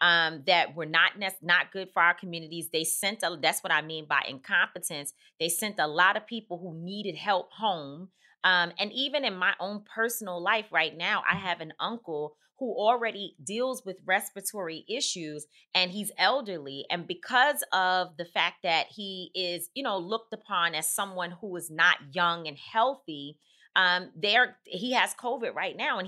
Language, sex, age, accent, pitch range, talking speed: English, female, 30-49, American, 170-215 Hz, 185 wpm